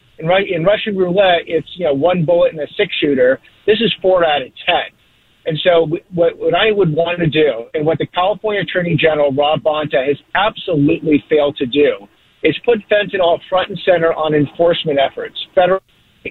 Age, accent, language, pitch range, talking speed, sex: 50-69, American, English, 155-190 Hz, 190 wpm, male